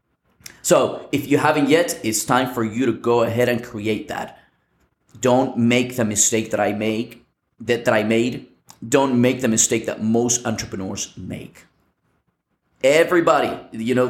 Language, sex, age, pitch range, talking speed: English, male, 30-49, 120-165 Hz, 155 wpm